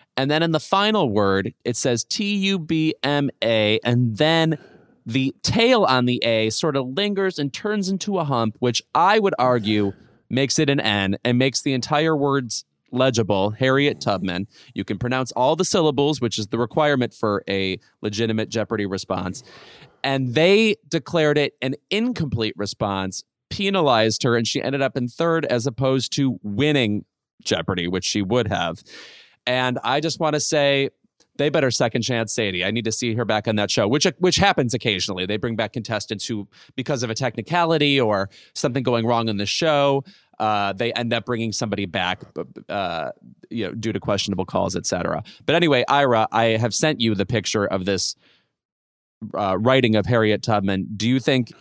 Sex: male